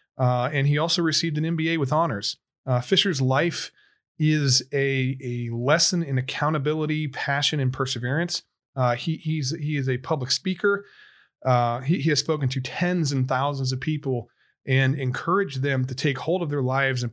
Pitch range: 130-155 Hz